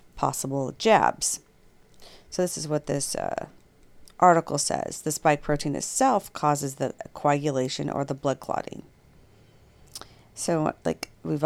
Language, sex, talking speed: English, female, 125 wpm